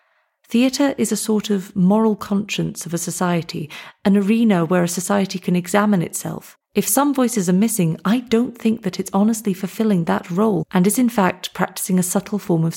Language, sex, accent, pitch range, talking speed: English, female, British, 175-210 Hz, 195 wpm